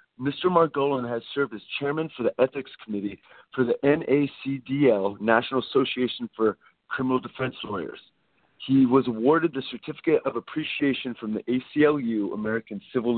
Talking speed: 140 wpm